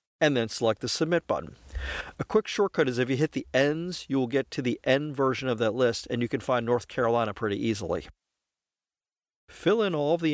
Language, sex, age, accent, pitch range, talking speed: English, male, 50-69, American, 115-145 Hz, 220 wpm